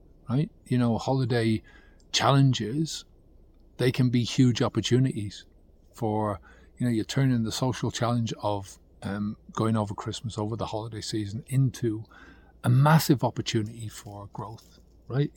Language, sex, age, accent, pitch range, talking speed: English, male, 40-59, British, 105-125 Hz, 135 wpm